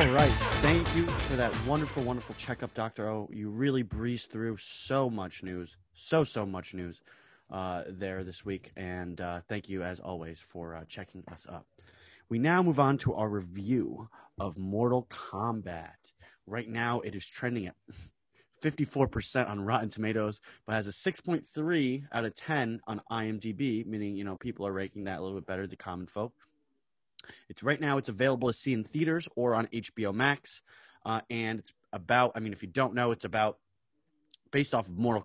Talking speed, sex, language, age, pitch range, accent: 185 wpm, male, English, 30-49, 100-130 Hz, American